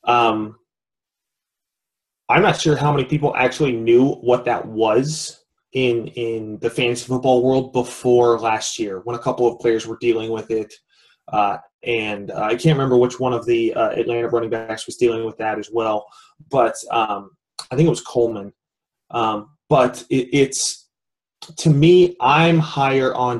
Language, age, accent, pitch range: English, 20-39, American, 115-150 Hz